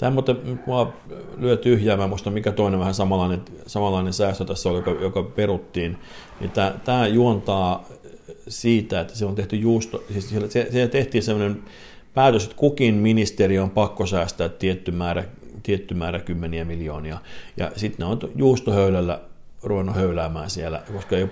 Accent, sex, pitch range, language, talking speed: native, male, 90-110 Hz, Finnish, 145 wpm